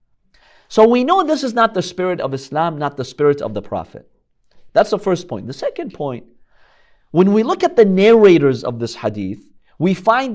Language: English